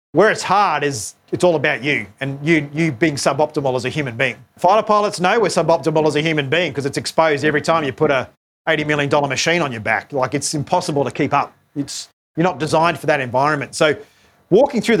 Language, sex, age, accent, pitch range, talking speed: English, male, 30-49, Australian, 145-190 Hz, 225 wpm